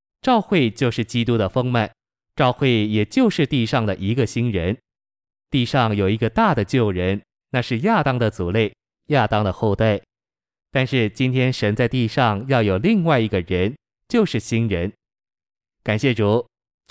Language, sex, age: Chinese, male, 20-39